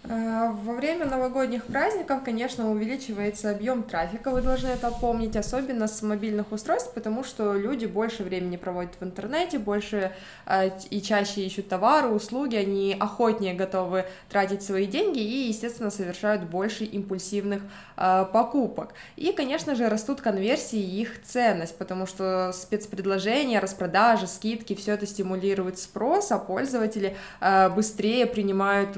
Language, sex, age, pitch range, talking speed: Russian, female, 20-39, 190-235 Hz, 130 wpm